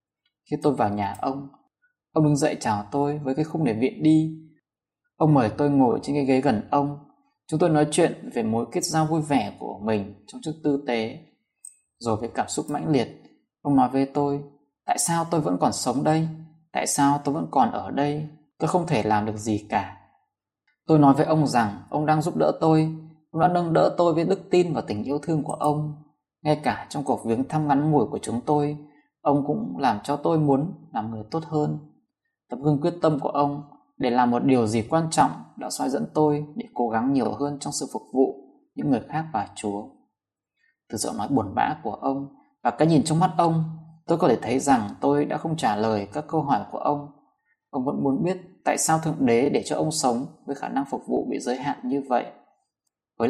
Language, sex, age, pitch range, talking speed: Vietnamese, male, 20-39, 135-160 Hz, 225 wpm